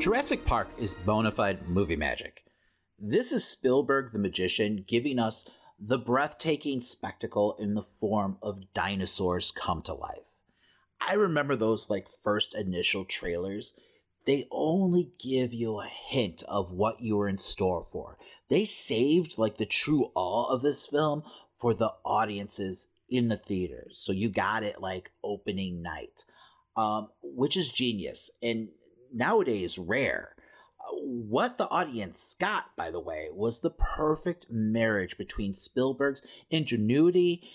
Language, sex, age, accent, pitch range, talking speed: English, male, 30-49, American, 100-130 Hz, 140 wpm